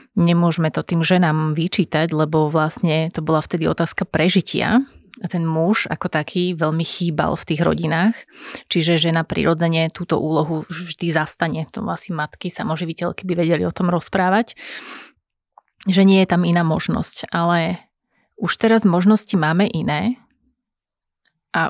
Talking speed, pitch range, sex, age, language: 140 wpm, 160-190 Hz, female, 30-49, Slovak